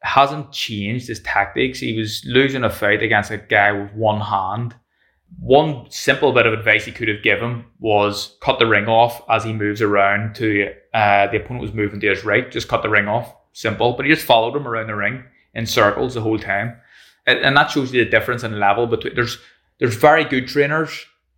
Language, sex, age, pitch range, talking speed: English, male, 20-39, 105-125 Hz, 215 wpm